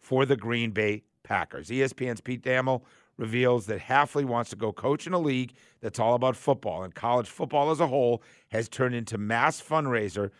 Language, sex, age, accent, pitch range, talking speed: English, male, 50-69, American, 105-130 Hz, 190 wpm